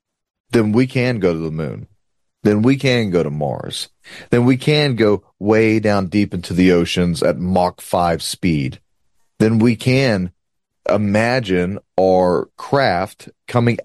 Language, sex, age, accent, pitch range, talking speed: English, male, 30-49, American, 90-120 Hz, 145 wpm